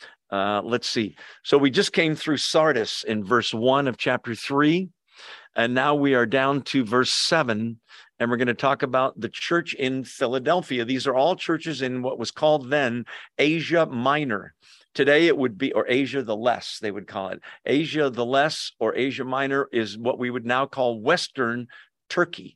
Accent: American